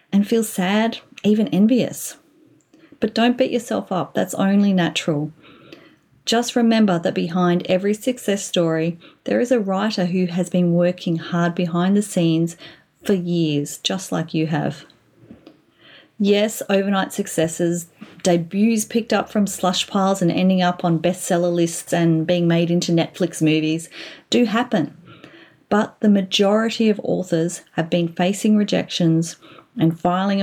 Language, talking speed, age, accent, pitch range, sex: English, 140 wpm, 30-49, Australian, 170-220 Hz, female